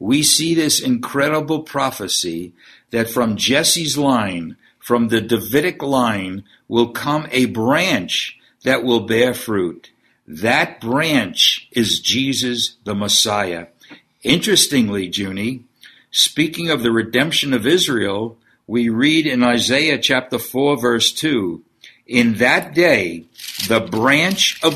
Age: 60-79